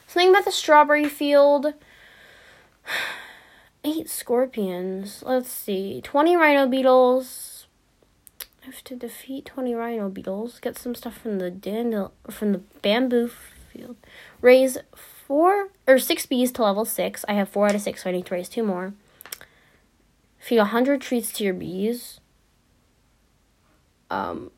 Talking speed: 140 wpm